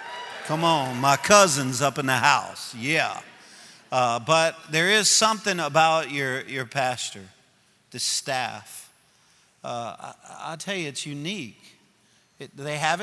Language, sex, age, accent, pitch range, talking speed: English, male, 50-69, American, 150-210 Hz, 140 wpm